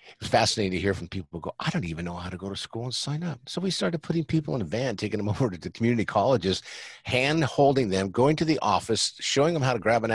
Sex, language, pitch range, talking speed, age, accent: male, English, 95-135 Hz, 285 wpm, 50-69, American